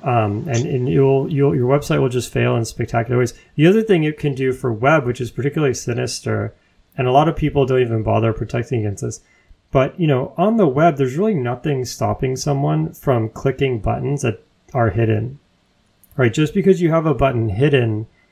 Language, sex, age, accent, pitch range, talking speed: English, male, 30-49, American, 115-140 Hz, 195 wpm